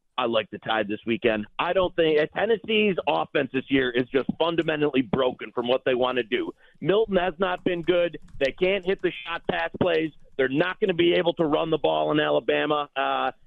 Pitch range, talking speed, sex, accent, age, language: 140-230 Hz, 215 wpm, male, American, 40-59, English